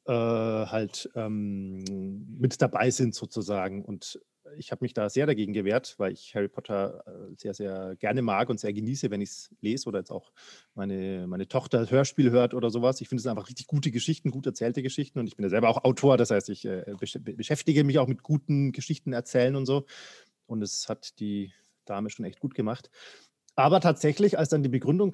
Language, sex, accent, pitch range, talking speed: German, male, German, 105-145 Hz, 205 wpm